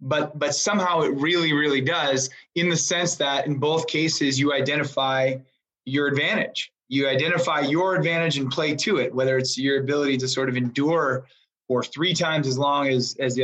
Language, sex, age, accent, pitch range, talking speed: English, male, 20-39, American, 130-160 Hz, 190 wpm